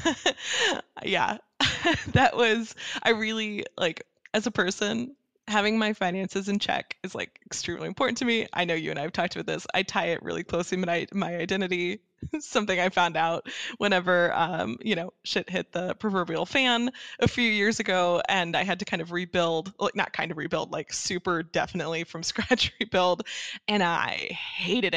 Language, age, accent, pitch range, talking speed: English, 20-39, American, 175-220 Hz, 180 wpm